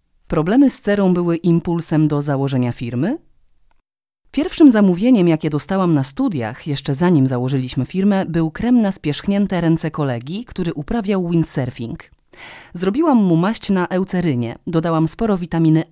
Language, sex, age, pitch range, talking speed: Polish, female, 30-49, 145-195 Hz, 130 wpm